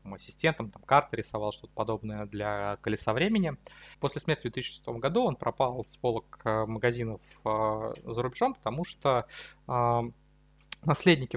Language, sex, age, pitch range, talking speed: Russian, male, 20-39, 115-135 Hz, 135 wpm